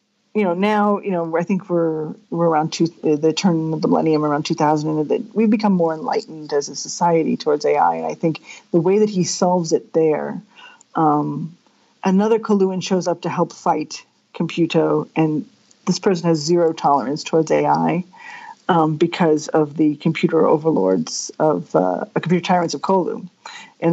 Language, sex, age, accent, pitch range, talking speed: English, female, 40-59, American, 165-220 Hz, 175 wpm